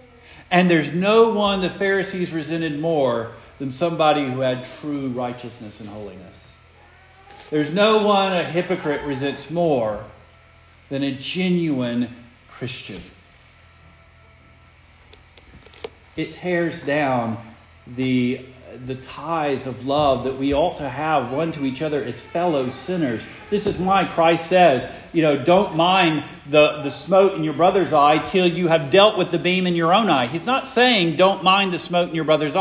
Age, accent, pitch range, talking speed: 50-69, American, 125-185 Hz, 155 wpm